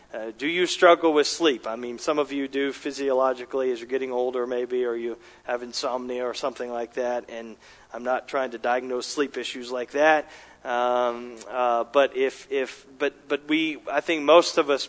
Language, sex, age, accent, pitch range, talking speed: English, male, 40-59, American, 130-165 Hz, 200 wpm